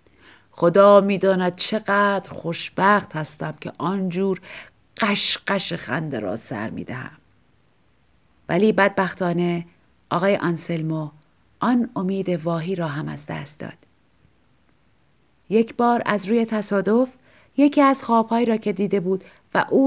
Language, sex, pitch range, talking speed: Persian, female, 180-245 Hz, 115 wpm